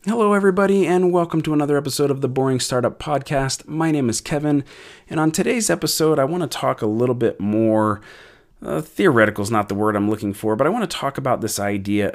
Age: 30-49